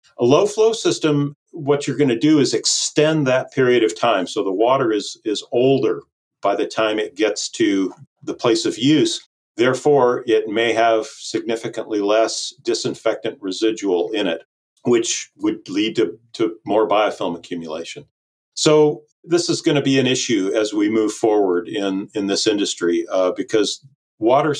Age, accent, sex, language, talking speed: 40-59, American, male, English, 165 wpm